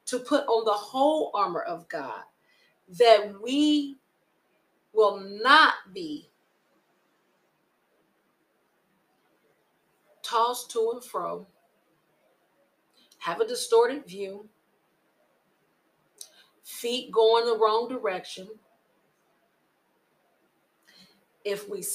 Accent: American